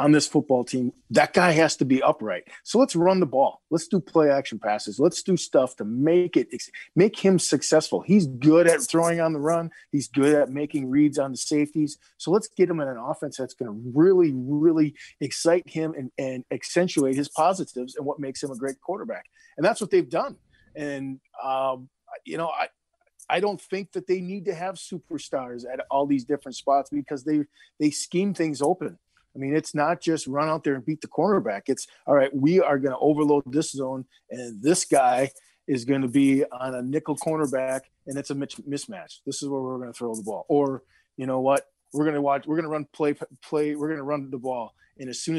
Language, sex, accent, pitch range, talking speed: English, male, American, 135-160 Hz, 225 wpm